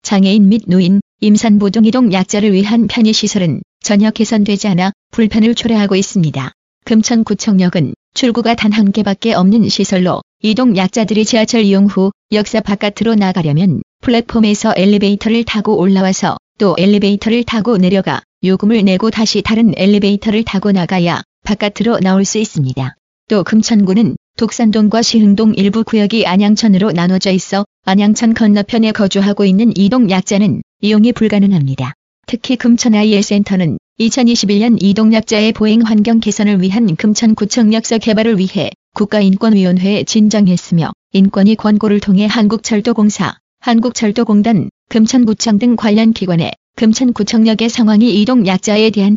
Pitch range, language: 195-225 Hz, Korean